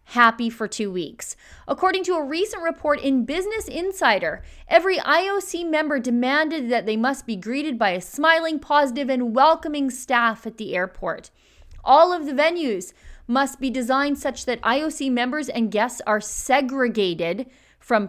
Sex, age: female, 30-49